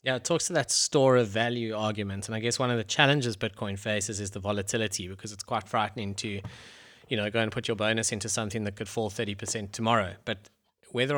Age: 20-39